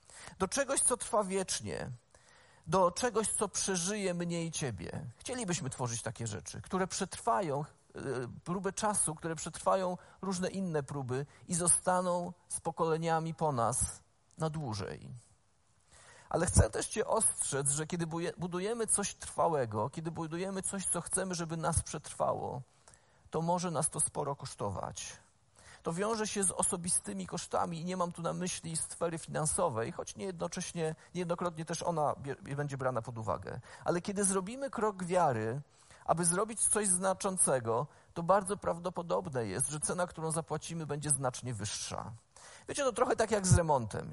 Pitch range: 140-190 Hz